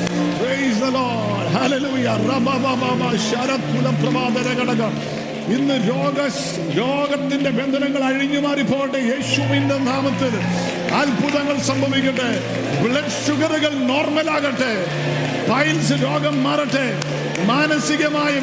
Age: 50-69